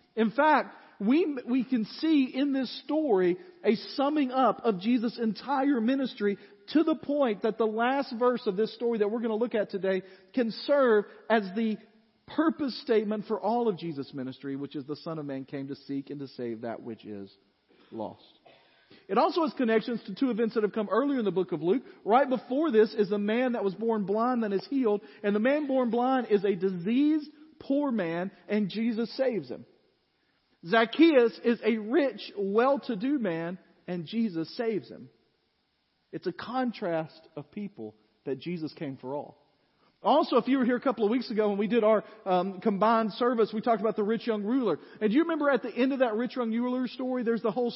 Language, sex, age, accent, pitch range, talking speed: English, male, 40-59, American, 195-250 Hz, 205 wpm